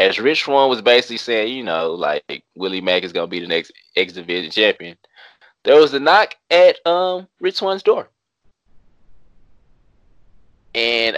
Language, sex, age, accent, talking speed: English, male, 20-39, American, 160 wpm